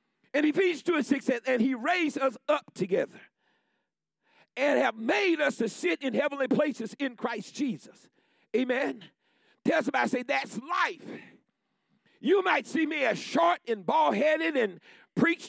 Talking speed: 160 wpm